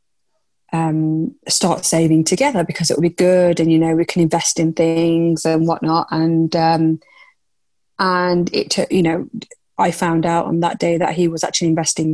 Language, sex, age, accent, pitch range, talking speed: English, female, 20-39, British, 165-185 Hz, 185 wpm